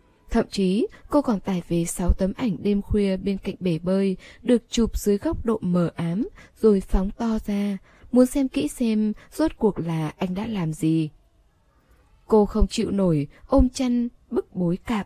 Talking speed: 185 wpm